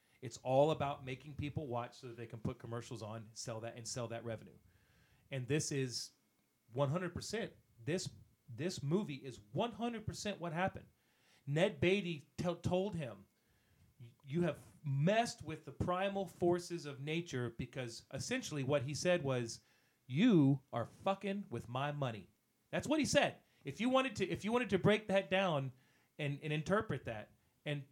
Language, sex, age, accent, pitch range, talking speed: English, male, 40-59, American, 120-155 Hz, 165 wpm